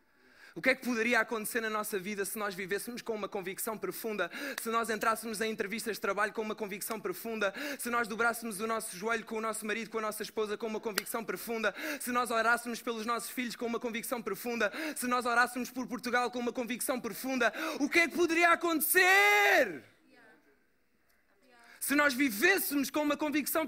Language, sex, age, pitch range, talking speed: Portuguese, male, 20-39, 225-330 Hz, 195 wpm